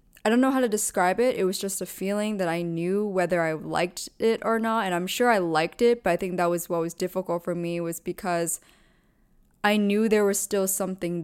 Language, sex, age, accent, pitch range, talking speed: English, female, 20-39, American, 170-200 Hz, 240 wpm